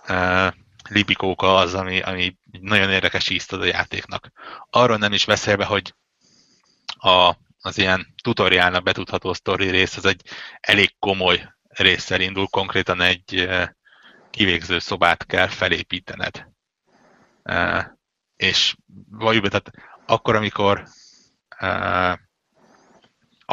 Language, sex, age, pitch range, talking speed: Hungarian, male, 30-49, 90-105 Hz, 110 wpm